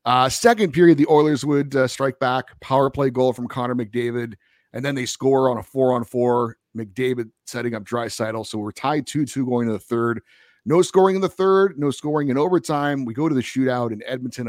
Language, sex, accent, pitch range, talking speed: English, male, American, 115-150 Hz, 205 wpm